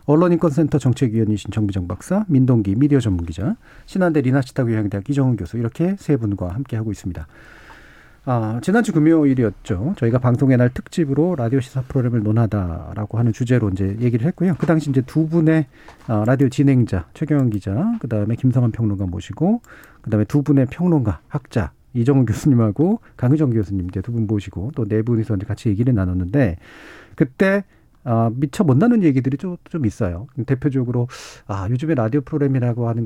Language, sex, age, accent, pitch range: Korean, male, 40-59, native, 110-150 Hz